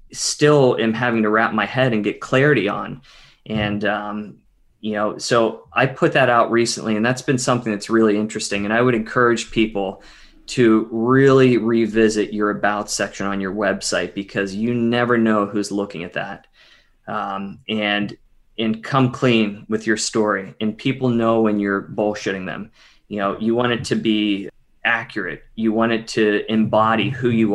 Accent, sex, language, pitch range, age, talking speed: American, male, English, 105-120 Hz, 20-39, 175 wpm